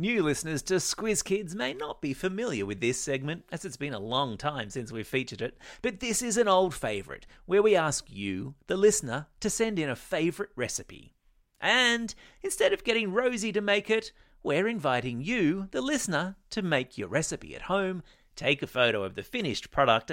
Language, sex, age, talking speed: English, male, 30-49, 195 wpm